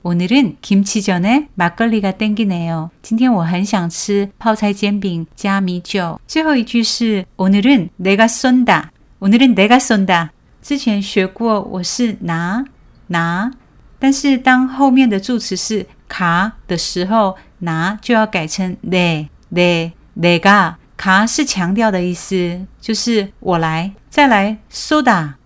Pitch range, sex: 180-230 Hz, female